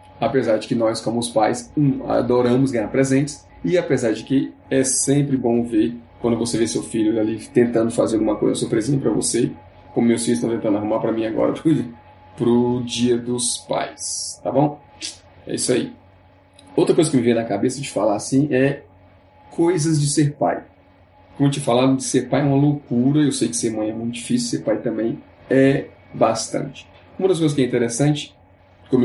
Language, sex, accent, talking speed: Portuguese, male, Brazilian, 195 wpm